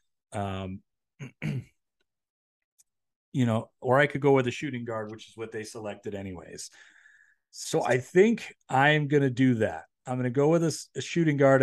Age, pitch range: 30-49, 120-155 Hz